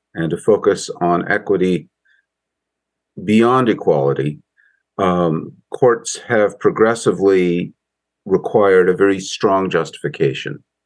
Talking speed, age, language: 90 wpm, 50-69, English